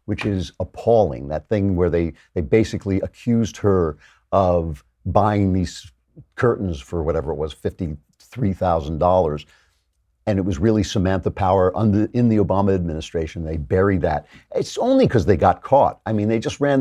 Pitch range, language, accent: 85-115 Hz, English, American